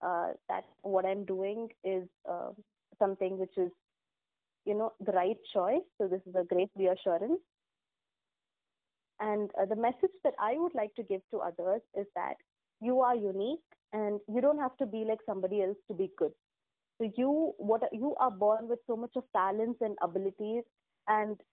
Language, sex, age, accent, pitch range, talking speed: English, female, 20-39, Indian, 195-245 Hz, 175 wpm